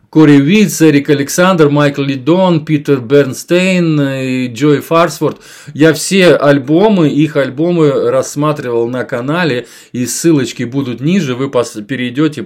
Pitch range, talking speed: 130-165 Hz, 115 wpm